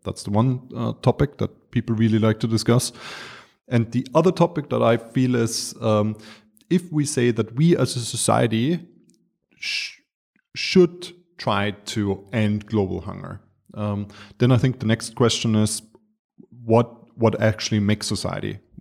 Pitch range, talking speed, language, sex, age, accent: 100-120 Hz, 155 wpm, English, male, 30-49, German